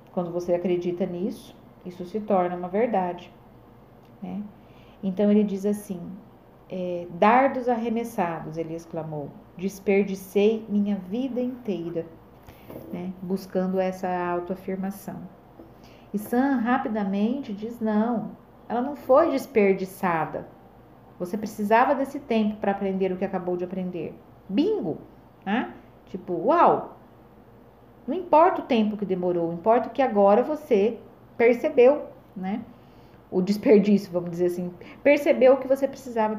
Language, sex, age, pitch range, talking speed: Portuguese, female, 40-59, 185-235 Hz, 120 wpm